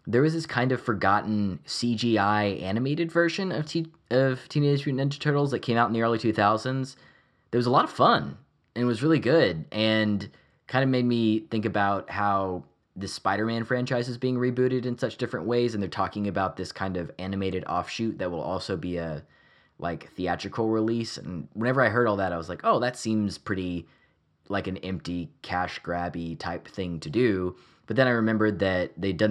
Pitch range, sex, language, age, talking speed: 90-120 Hz, male, English, 20-39, 200 wpm